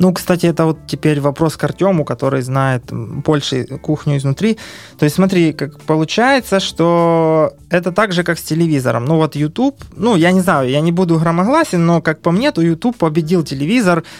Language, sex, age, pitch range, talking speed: Ukrainian, male, 20-39, 145-180 Hz, 180 wpm